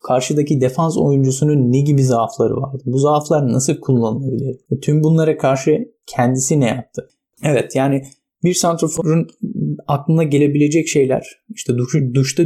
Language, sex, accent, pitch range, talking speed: Turkish, male, native, 125-155 Hz, 125 wpm